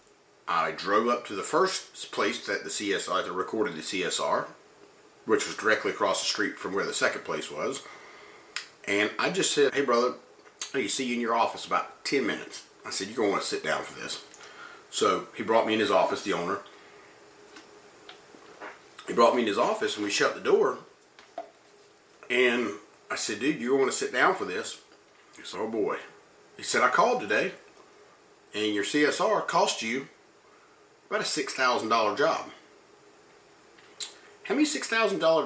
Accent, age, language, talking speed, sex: American, 40-59, English, 185 wpm, male